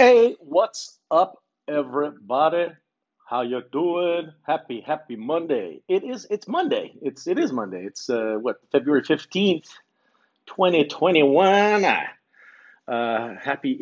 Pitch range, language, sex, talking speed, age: 115-175 Hz, English, male, 115 wpm, 40-59